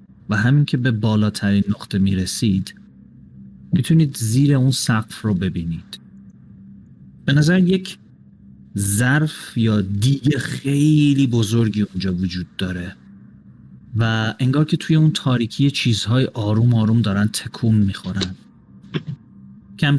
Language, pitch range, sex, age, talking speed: Persian, 95-130 Hz, male, 30-49, 110 wpm